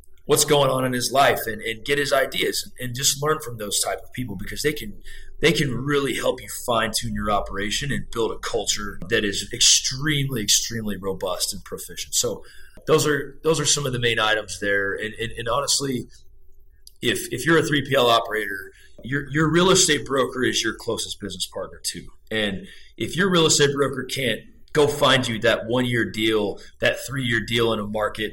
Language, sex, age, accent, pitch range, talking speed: English, male, 30-49, American, 105-140 Hz, 195 wpm